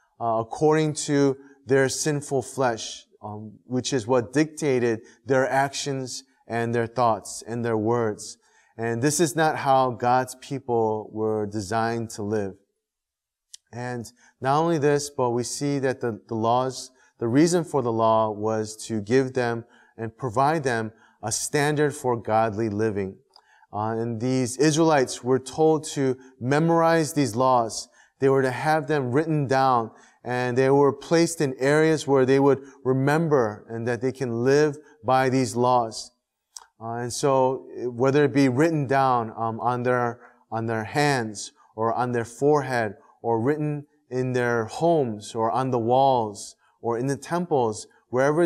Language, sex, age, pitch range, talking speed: English, male, 30-49, 115-140 Hz, 155 wpm